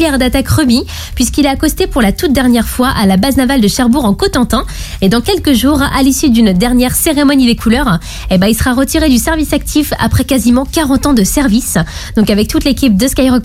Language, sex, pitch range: French, female, 230-290 Hz